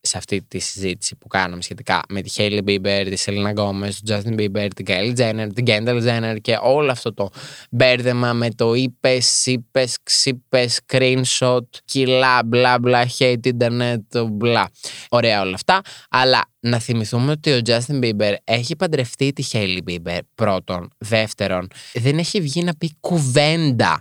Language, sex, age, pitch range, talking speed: Greek, male, 20-39, 110-150 Hz, 155 wpm